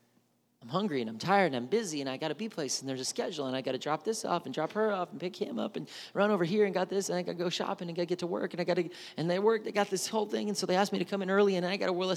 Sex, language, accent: male, English, American